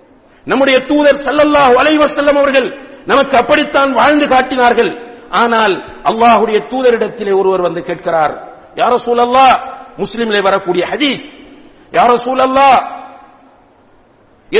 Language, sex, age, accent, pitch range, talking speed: English, male, 50-69, Indian, 225-280 Hz, 110 wpm